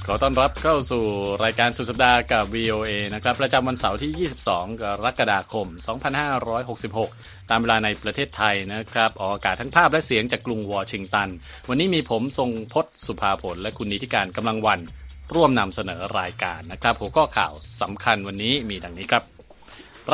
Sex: male